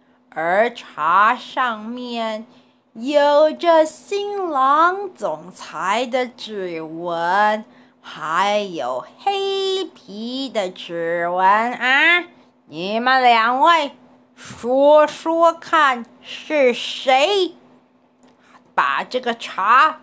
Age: 30-49